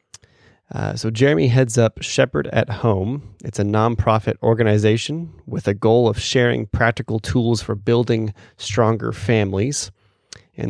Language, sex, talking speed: English, male, 135 wpm